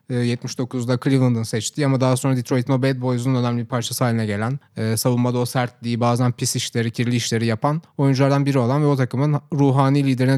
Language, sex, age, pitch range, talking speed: Turkish, male, 30-49, 130-160 Hz, 185 wpm